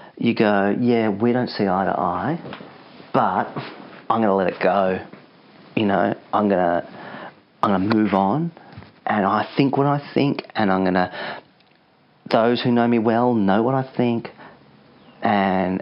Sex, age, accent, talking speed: male, 40-59, Australian, 160 wpm